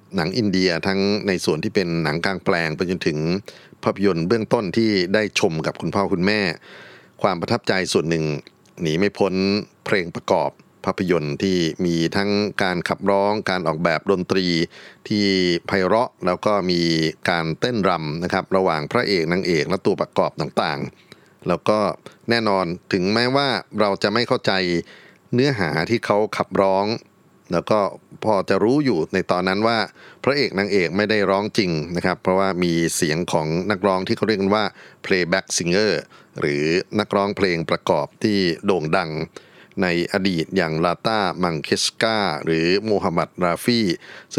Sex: male